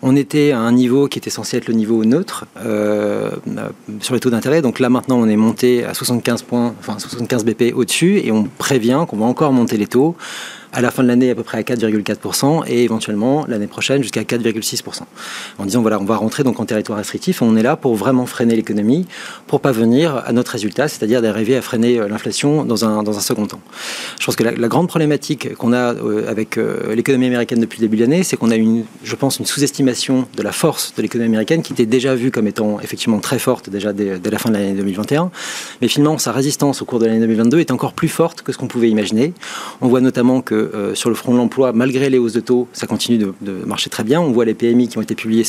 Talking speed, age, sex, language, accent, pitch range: 245 wpm, 40-59, male, French, French, 110-130 Hz